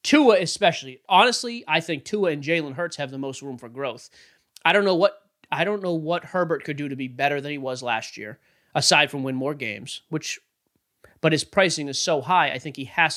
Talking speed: 230 wpm